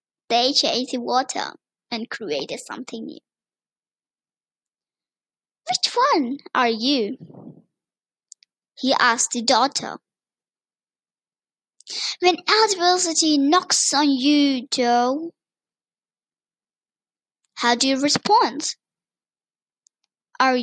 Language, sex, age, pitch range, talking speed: English, male, 10-29, 250-320 Hz, 80 wpm